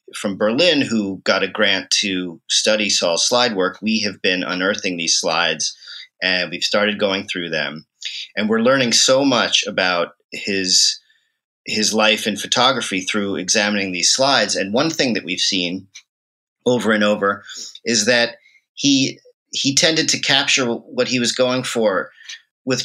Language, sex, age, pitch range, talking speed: English, male, 40-59, 100-130 Hz, 160 wpm